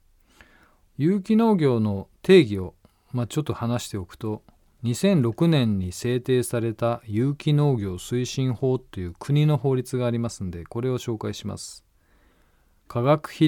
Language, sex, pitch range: Japanese, male, 95-145 Hz